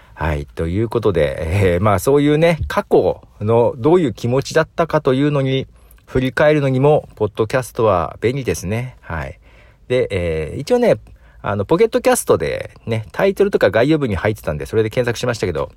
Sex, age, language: male, 50-69, Japanese